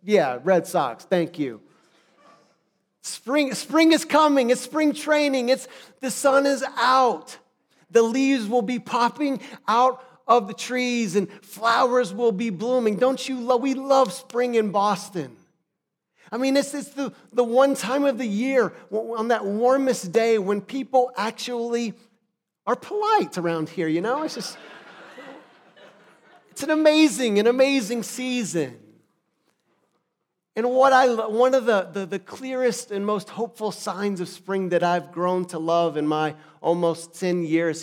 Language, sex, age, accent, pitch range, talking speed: English, male, 40-59, American, 175-250 Hz, 150 wpm